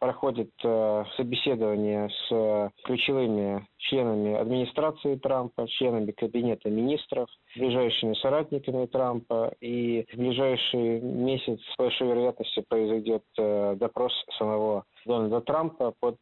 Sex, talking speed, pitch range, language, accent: male, 105 wpm, 105-125 Hz, Russian, native